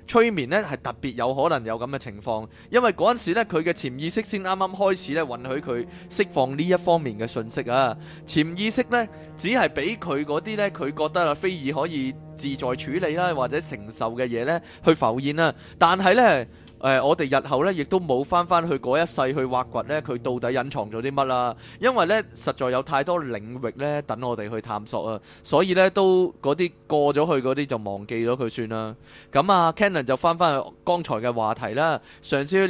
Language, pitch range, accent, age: Chinese, 125-180 Hz, native, 20-39